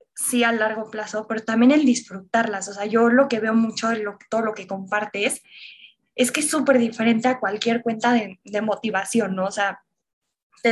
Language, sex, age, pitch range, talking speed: Spanish, female, 20-39, 215-245 Hz, 200 wpm